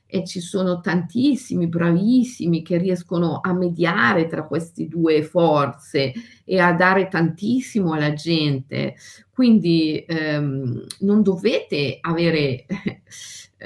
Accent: native